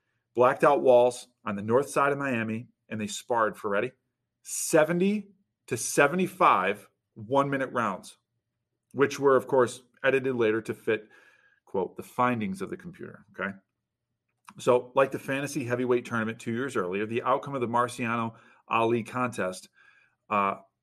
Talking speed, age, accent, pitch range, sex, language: 145 wpm, 40-59, American, 120-155 Hz, male, English